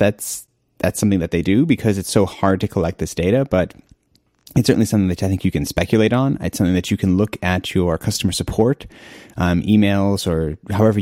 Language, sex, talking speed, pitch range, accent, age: English, male, 210 wpm, 90-105 Hz, American, 30-49